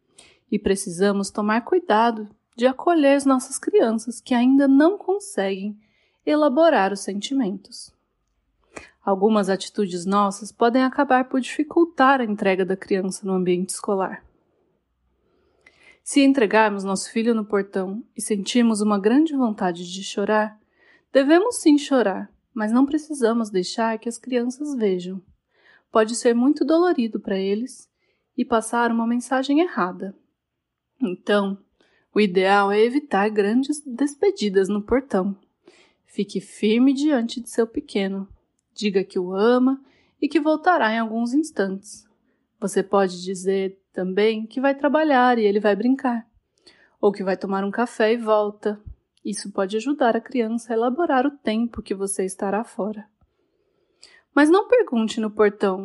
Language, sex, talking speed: Portuguese, female, 135 wpm